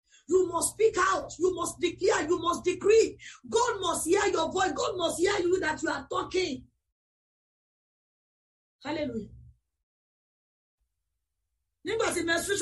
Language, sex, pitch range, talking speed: English, female, 260-360 Hz, 115 wpm